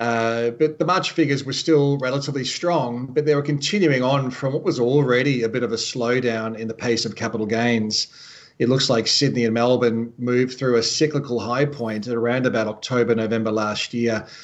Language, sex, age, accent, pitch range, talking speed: English, male, 40-59, Australian, 115-140 Hz, 200 wpm